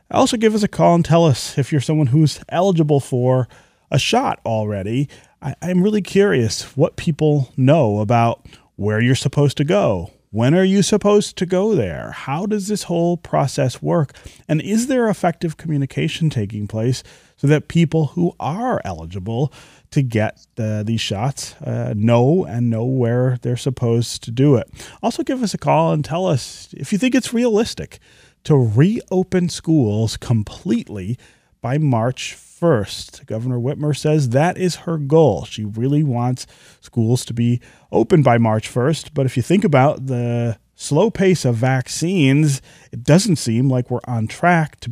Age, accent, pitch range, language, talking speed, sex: 30-49, American, 120-170 Hz, English, 165 wpm, male